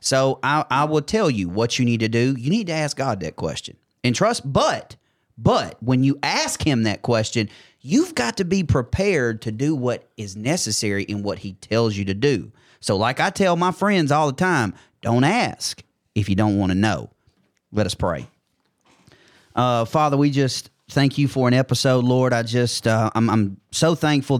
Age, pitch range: 30-49, 110-130 Hz